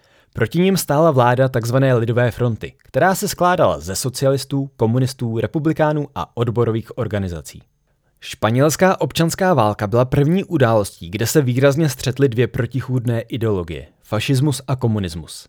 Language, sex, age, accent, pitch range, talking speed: Czech, male, 20-39, native, 115-145 Hz, 130 wpm